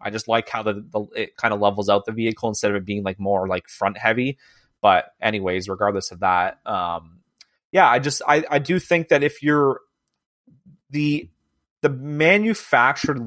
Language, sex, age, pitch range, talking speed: English, male, 30-49, 105-135 Hz, 185 wpm